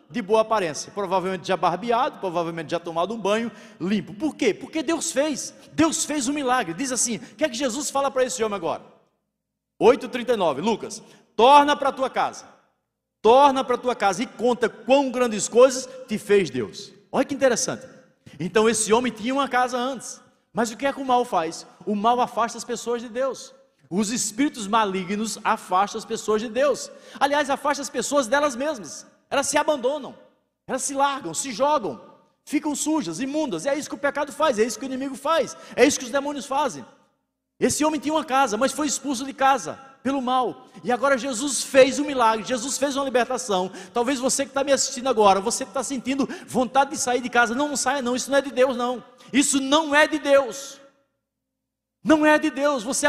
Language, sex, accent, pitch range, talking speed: Portuguese, male, Brazilian, 230-280 Hz, 200 wpm